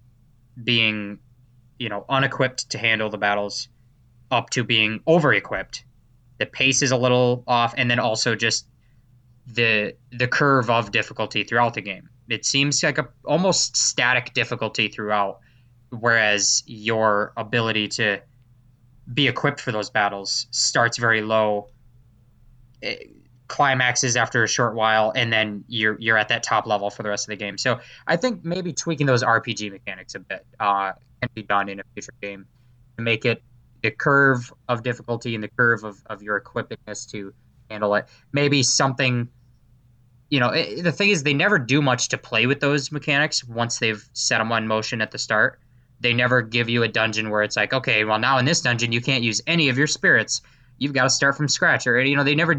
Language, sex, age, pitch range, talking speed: English, male, 20-39, 110-130 Hz, 185 wpm